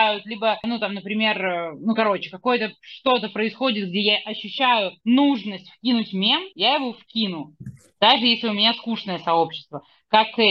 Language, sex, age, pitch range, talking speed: Russian, female, 20-39, 200-250 Hz, 145 wpm